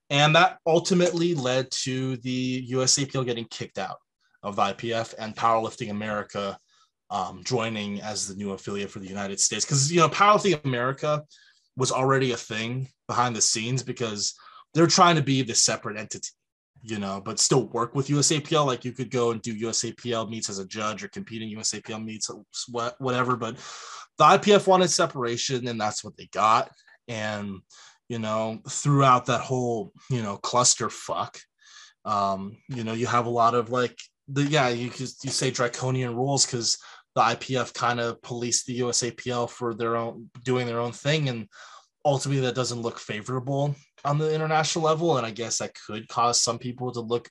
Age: 20-39